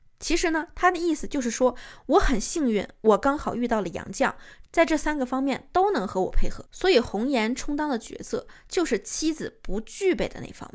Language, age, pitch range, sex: Chinese, 20-39, 225-310 Hz, female